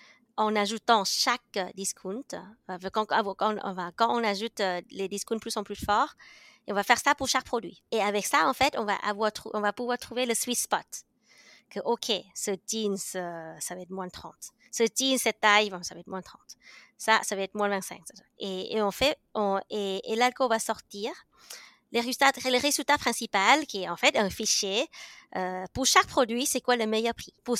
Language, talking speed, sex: French, 215 wpm, female